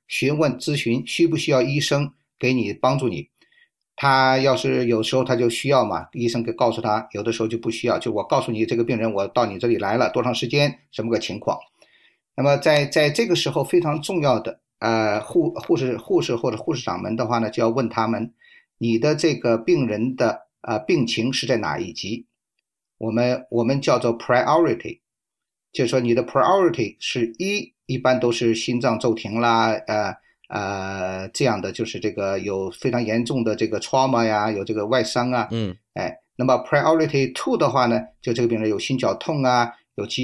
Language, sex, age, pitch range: Chinese, male, 50-69, 115-135 Hz